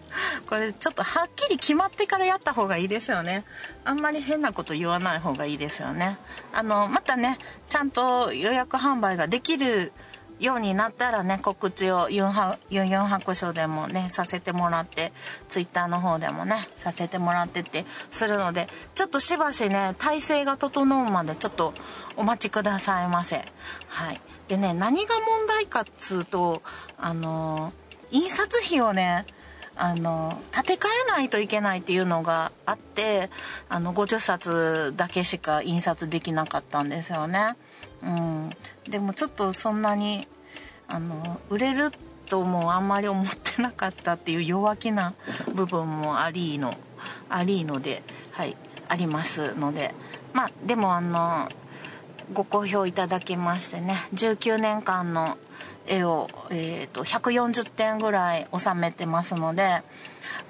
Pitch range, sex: 170-220 Hz, female